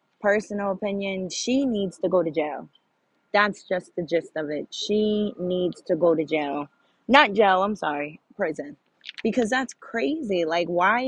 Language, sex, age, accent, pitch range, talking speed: English, female, 20-39, American, 170-230 Hz, 160 wpm